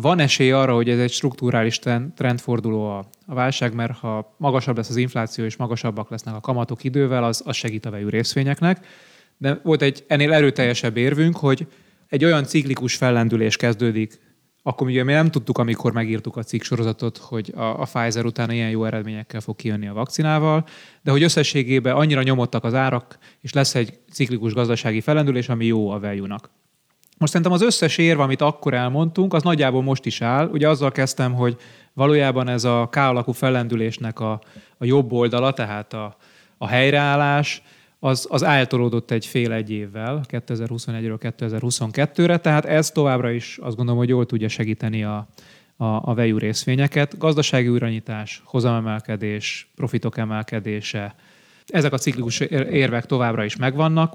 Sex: male